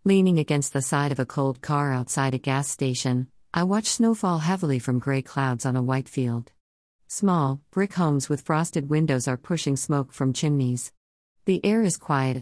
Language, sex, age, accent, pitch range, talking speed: English, female, 50-69, American, 130-160 Hz, 185 wpm